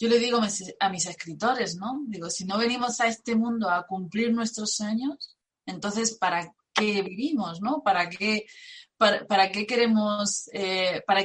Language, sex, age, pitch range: Spanish, female, 20-39, 190-235 Hz